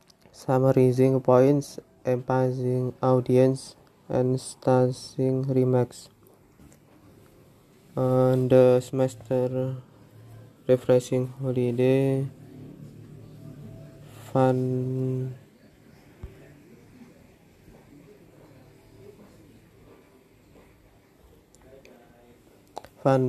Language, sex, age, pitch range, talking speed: Indonesian, male, 20-39, 125-130 Hz, 35 wpm